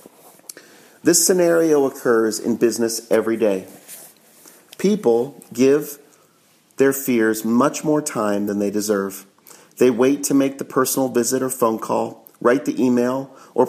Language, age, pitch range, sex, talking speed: English, 40-59, 115-160 Hz, male, 135 wpm